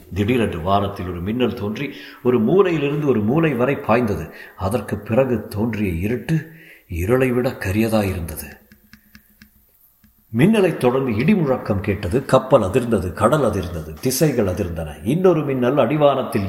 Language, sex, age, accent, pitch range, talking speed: Tamil, male, 50-69, native, 100-135 Hz, 75 wpm